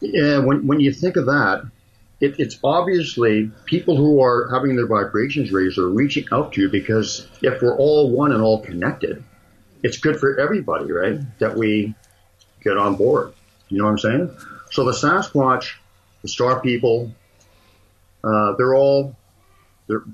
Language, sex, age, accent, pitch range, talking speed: English, male, 50-69, American, 95-125 Hz, 165 wpm